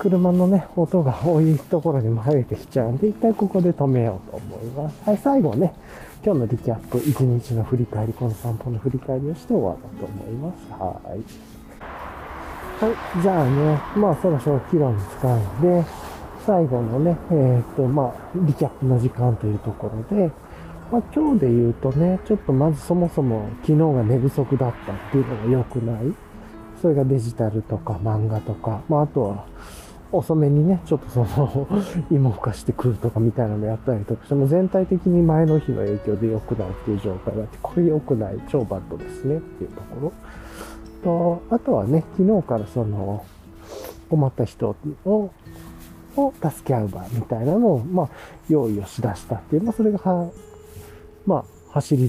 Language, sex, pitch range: Japanese, male, 110-170 Hz